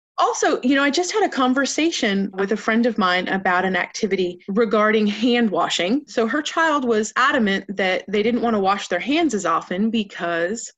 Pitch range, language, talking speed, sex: 195-265 Hz, English, 195 wpm, female